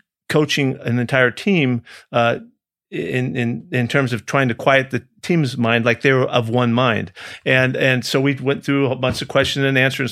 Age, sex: 50-69, male